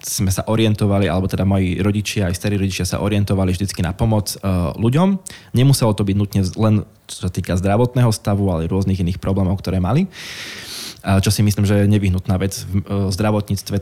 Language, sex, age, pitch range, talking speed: Slovak, male, 20-39, 100-120 Hz, 180 wpm